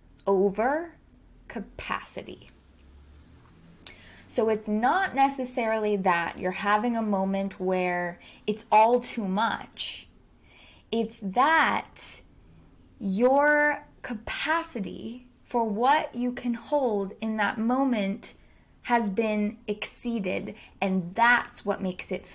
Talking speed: 95 wpm